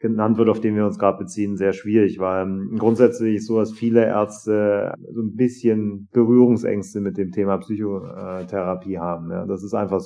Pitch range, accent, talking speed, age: 95-110 Hz, German, 165 wpm, 30-49